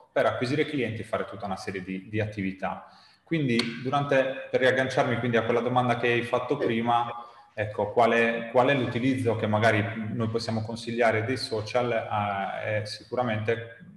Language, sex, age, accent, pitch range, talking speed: Italian, male, 30-49, native, 105-130 Hz, 170 wpm